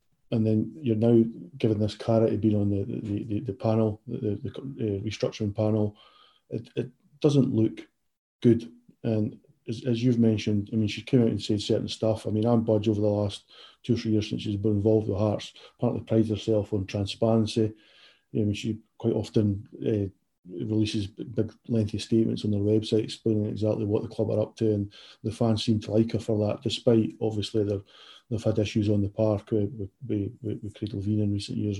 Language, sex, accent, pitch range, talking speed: English, male, British, 105-115 Hz, 205 wpm